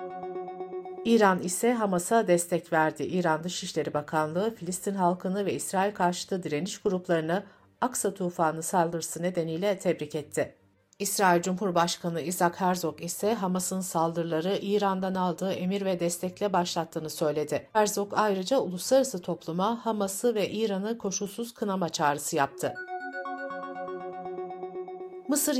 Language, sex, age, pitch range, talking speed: Turkish, female, 60-79, 160-205 Hz, 110 wpm